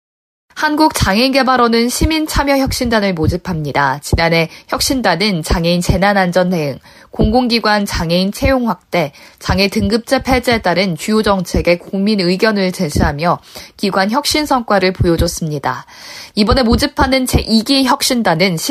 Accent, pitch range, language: native, 175-245 Hz, Korean